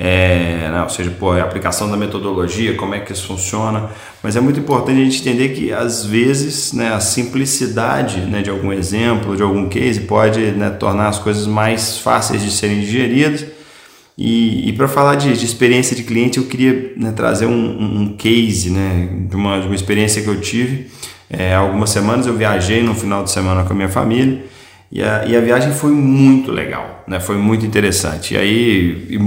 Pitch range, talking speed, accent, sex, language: 95-120 Hz, 200 wpm, Brazilian, male, Portuguese